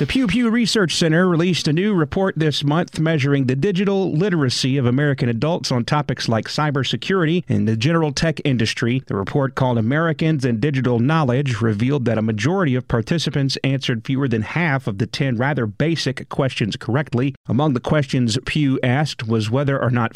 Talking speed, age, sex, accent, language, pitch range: 180 wpm, 40-59, male, American, English, 120-155 Hz